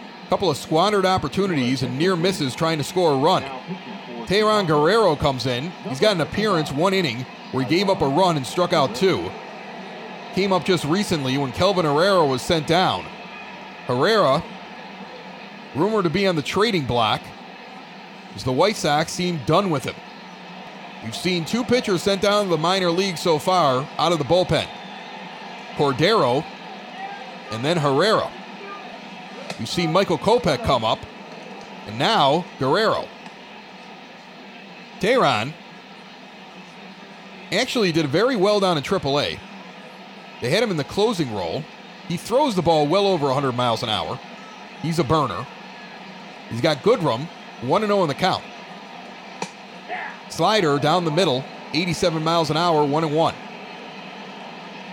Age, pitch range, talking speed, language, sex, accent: 30-49, 150-195 Hz, 145 wpm, English, male, American